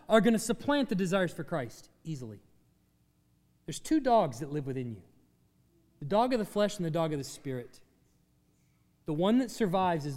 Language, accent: English, American